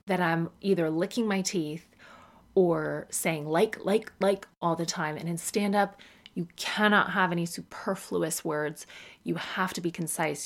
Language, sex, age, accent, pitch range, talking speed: English, female, 30-49, American, 170-210 Hz, 160 wpm